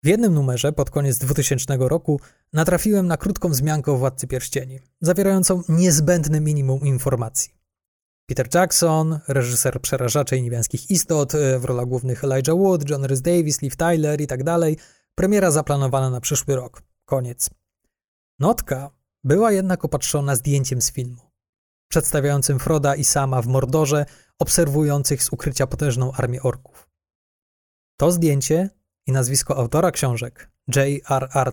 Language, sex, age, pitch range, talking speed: Polish, male, 20-39, 130-155 Hz, 130 wpm